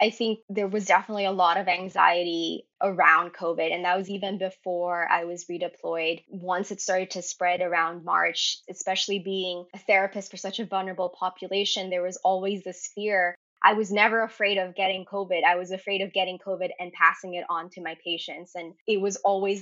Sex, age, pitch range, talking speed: female, 10-29, 180-200 Hz, 195 wpm